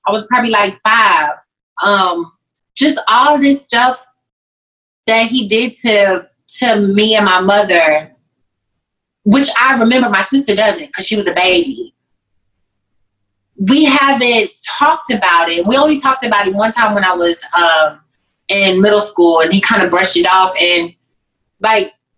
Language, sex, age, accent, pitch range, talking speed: English, female, 30-49, American, 195-260 Hz, 155 wpm